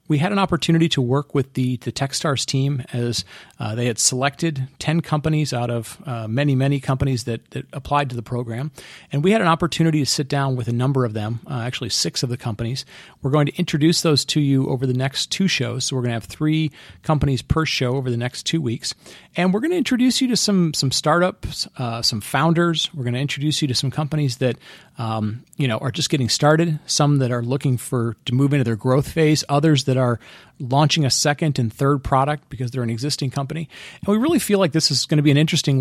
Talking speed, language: 240 wpm, English